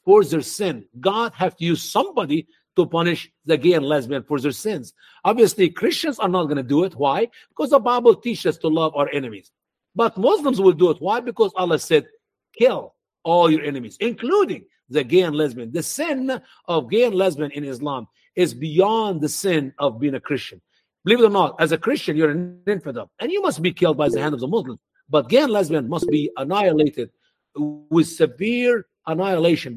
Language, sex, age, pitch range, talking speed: English, male, 50-69, 145-210 Hz, 200 wpm